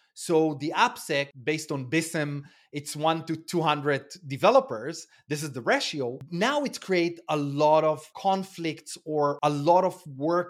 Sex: male